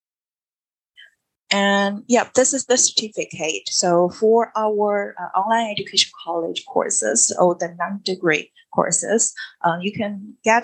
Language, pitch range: English, 180-230 Hz